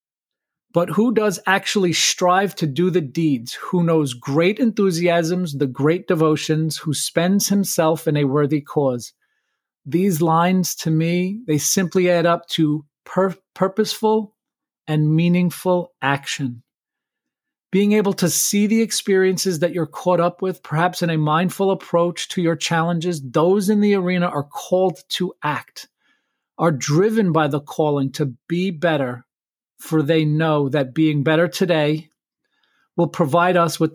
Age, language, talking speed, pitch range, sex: 40-59, English, 145 wpm, 155-185 Hz, male